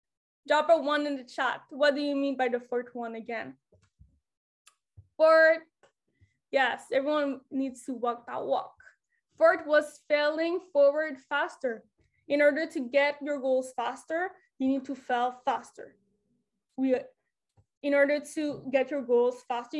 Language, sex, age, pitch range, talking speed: English, female, 10-29, 260-305 Hz, 145 wpm